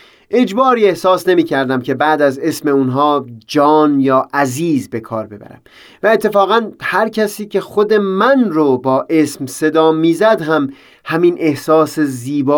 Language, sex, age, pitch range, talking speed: Persian, male, 30-49, 140-200 Hz, 150 wpm